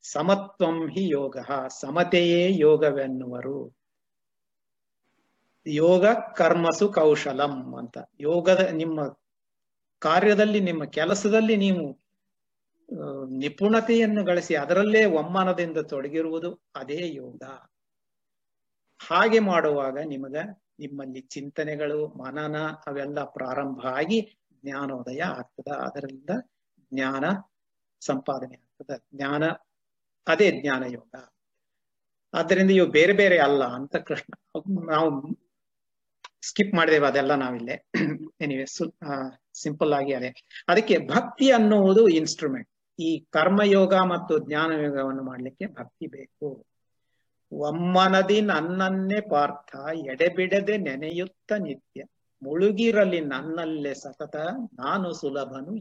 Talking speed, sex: 85 wpm, male